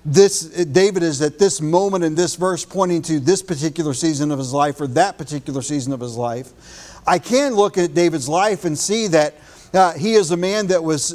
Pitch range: 155-185 Hz